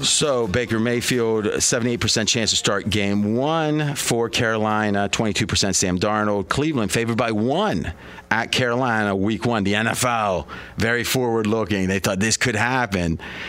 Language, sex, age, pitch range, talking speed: English, male, 40-59, 105-125 Hz, 140 wpm